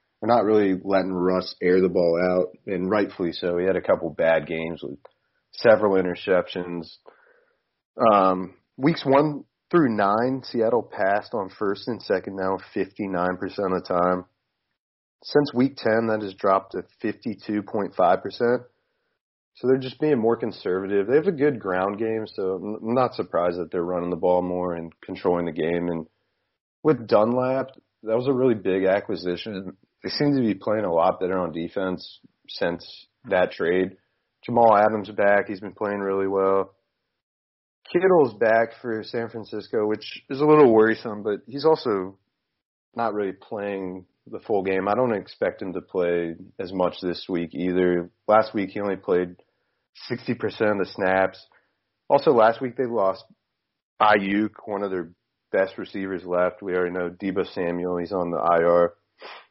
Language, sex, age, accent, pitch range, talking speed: English, male, 30-49, American, 90-110 Hz, 160 wpm